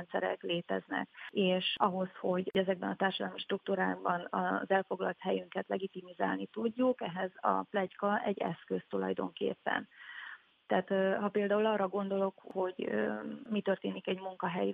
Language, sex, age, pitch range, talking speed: Hungarian, female, 30-49, 175-215 Hz, 120 wpm